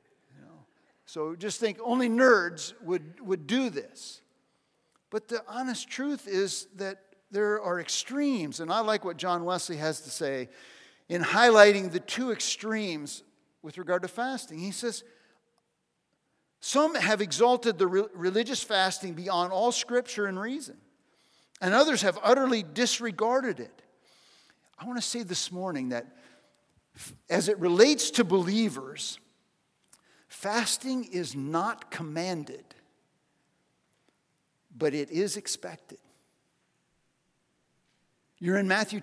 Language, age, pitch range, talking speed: English, 50-69, 180-245 Hz, 120 wpm